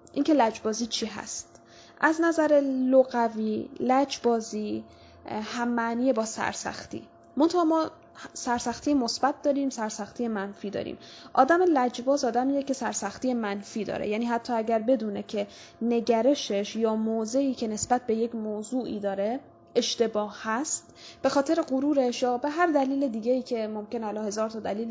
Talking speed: 135 wpm